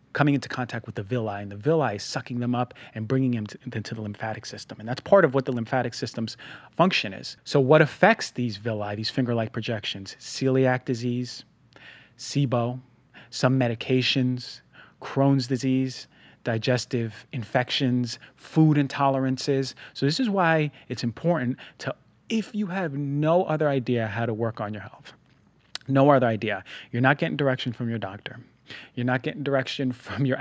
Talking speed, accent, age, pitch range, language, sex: 165 wpm, American, 30-49, 115-135 Hz, English, male